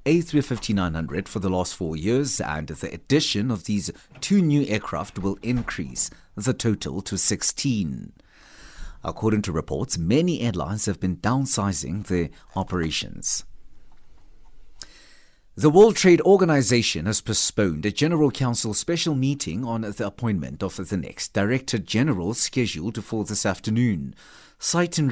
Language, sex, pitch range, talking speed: English, male, 90-130 Hz, 130 wpm